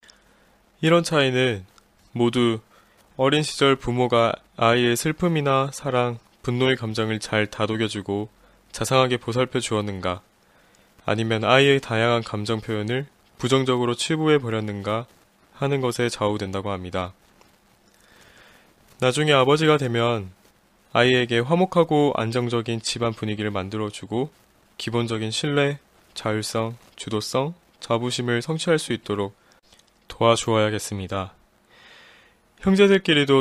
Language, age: Korean, 20-39